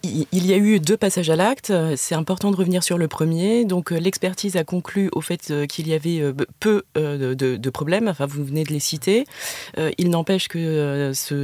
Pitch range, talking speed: 150-180 Hz, 205 wpm